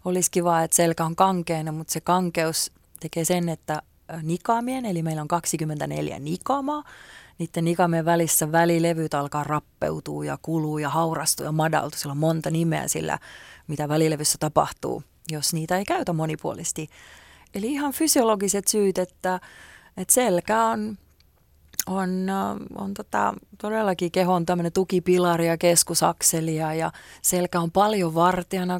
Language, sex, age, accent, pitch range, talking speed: Finnish, female, 30-49, native, 165-200 Hz, 135 wpm